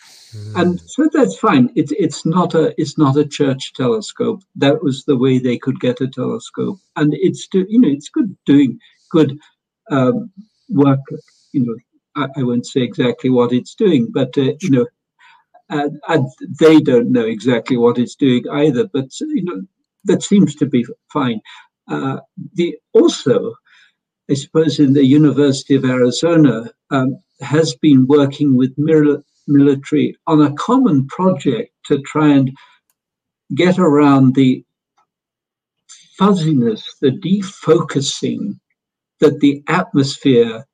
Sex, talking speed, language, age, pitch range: male, 145 wpm, English, 60-79, 130-170 Hz